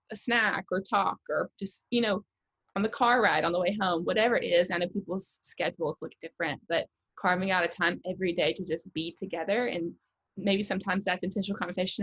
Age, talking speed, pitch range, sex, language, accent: 20-39, 210 wpm, 180-210 Hz, female, English, American